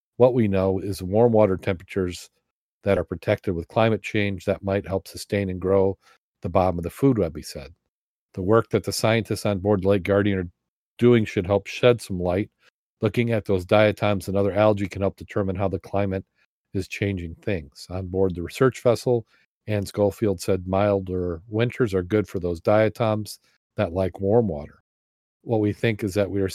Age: 40-59